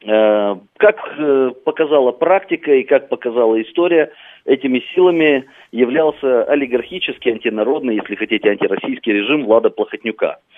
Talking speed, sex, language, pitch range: 100 wpm, male, Russian, 120-185 Hz